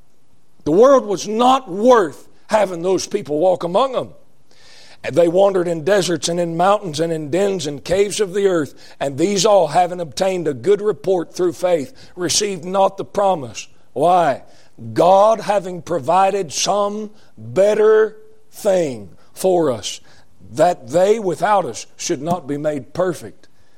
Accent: American